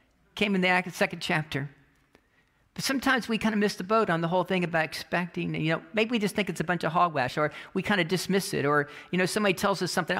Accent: American